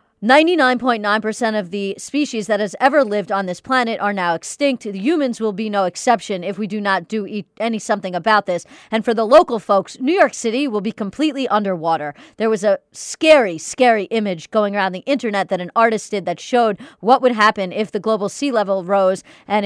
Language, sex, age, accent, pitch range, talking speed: English, female, 40-59, American, 205-260 Hz, 200 wpm